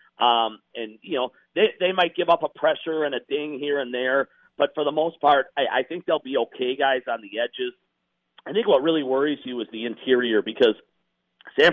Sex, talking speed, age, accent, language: male, 220 wpm, 50-69, American, English